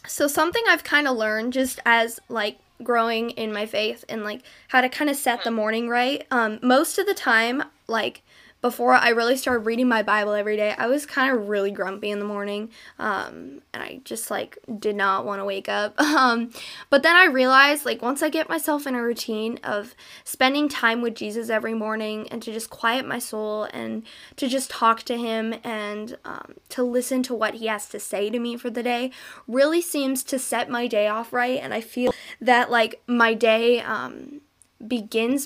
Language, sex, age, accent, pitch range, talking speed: English, female, 10-29, American, 215-255 Hz, 205 wpm